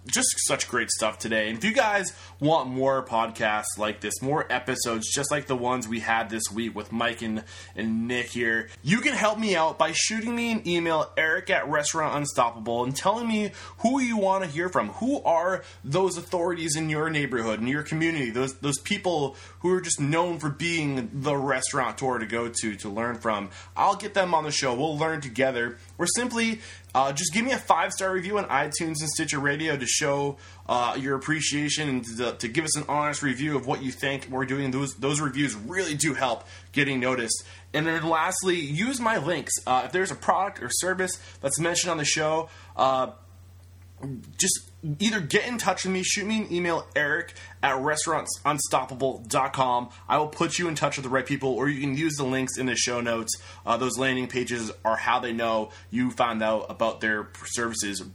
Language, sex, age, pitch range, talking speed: English, male, 20-39, 115-165 Hz, 205 wpm